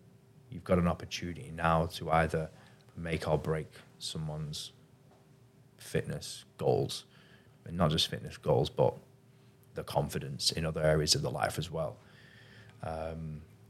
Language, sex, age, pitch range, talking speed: English, male, 20-39, 85-120 Hz, 130 wpm